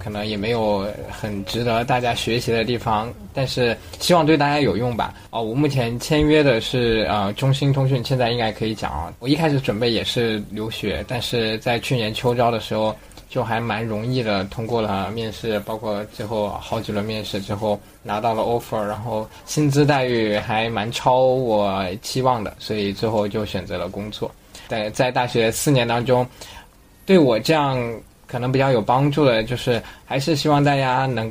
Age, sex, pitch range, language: 20-39, male, 105-130 Hz, Chinese